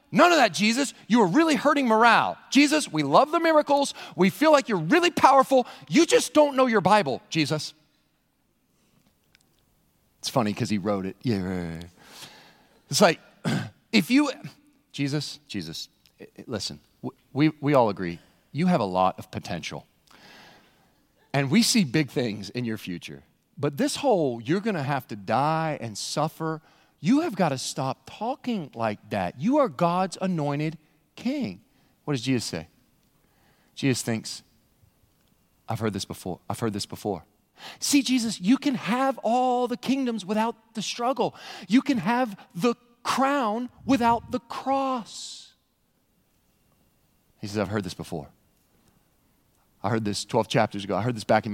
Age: 40-59